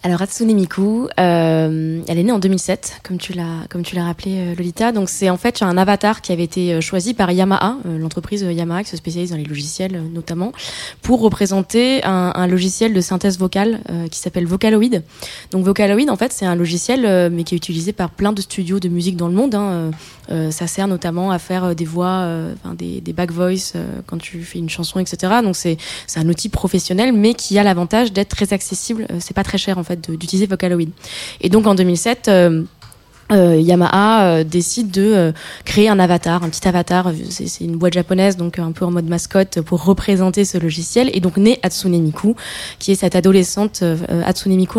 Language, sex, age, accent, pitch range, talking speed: French, female, 20-39, French, 170-195 Hz, 210 wpm